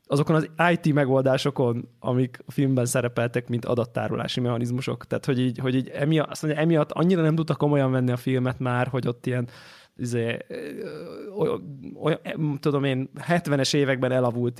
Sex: male